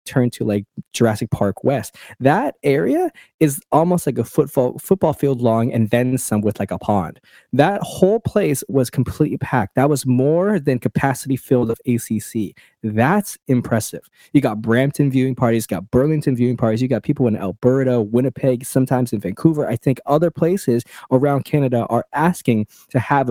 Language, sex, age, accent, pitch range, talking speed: English, male, 20-39, American, 120-150 Hz, 170 wpm